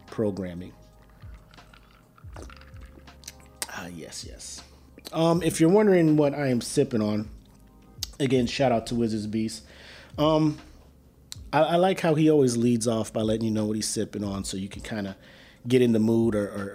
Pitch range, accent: 100-130 Hz, American